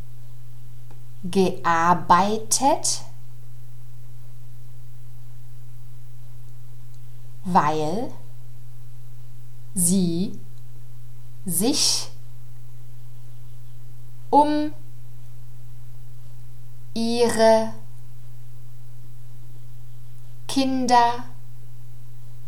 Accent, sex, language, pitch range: German, female, German, 120-175 Hz